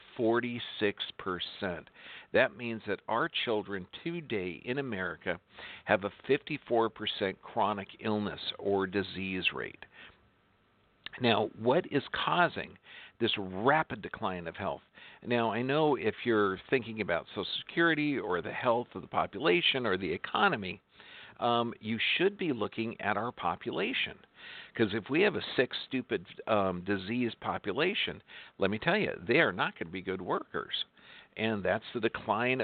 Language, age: English, 50-69